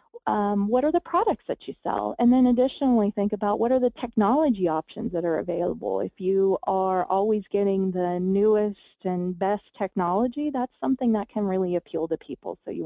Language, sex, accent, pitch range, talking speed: English, female, American, 190-250 Hz, 190 wpm